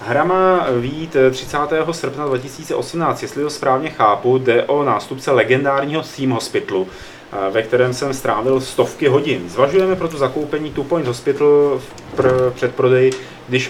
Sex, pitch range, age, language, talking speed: male, 120-140 Hz, 30-49, Czech, 140 wpm